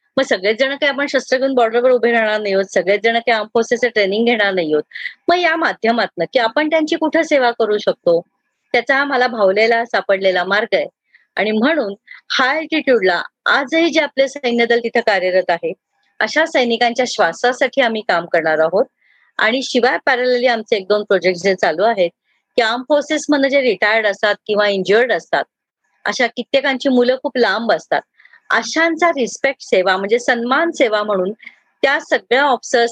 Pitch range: 205-265 Hz